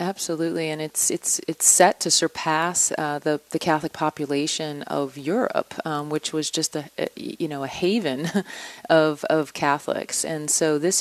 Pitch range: 150-180 Hz